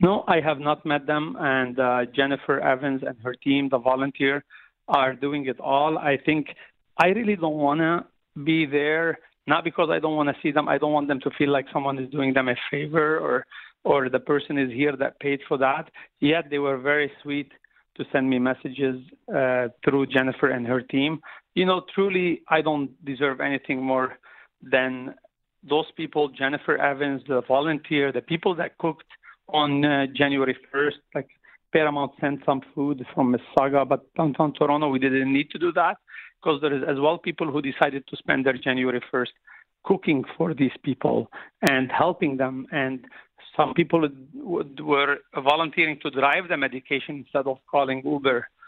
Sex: male